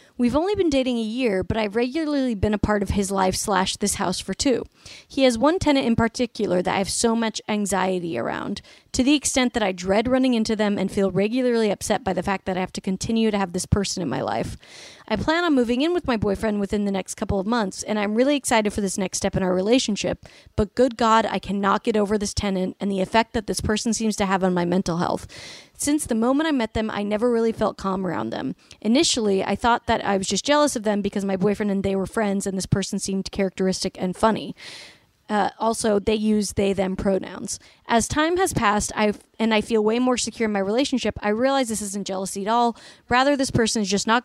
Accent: American